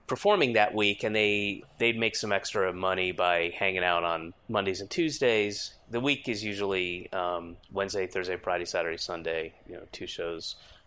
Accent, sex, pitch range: American, male, 85-115 Hz